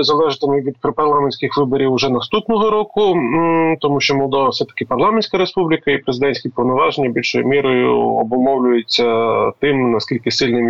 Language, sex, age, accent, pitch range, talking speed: Ukrainian, male, 30-49, native, 125-180 Hz, 125 wpm